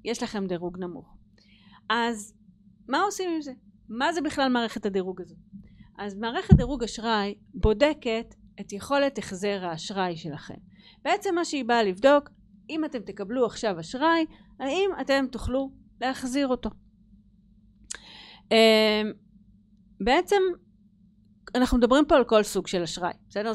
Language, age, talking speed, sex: Hebrew, 40-59, 125 wpm, female